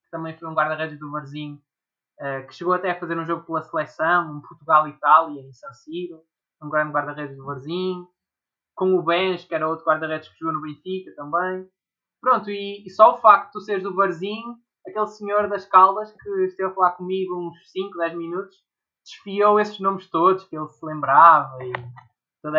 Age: 20-39